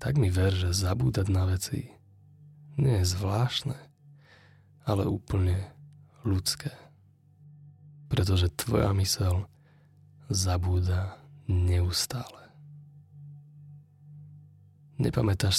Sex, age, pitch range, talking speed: male, 20-39, 100-145 Hz, 75 wpm